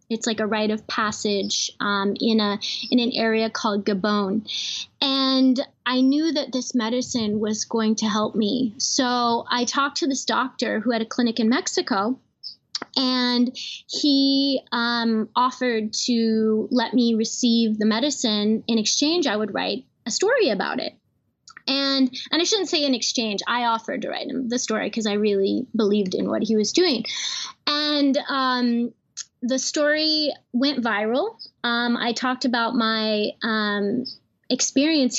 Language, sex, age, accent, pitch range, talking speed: English, female, 20-39, American, 220-275 Hz, 155 wpm